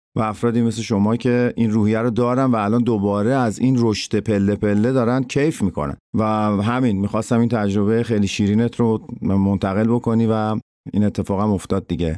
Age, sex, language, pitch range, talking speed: 50-69, male, Persian, 100-125 Hz, 175 wpm